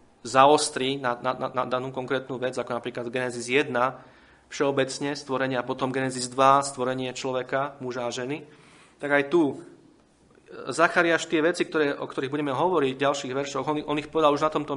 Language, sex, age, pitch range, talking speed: Slovak, male, 30-49, 125-145 Hz, 170 wpm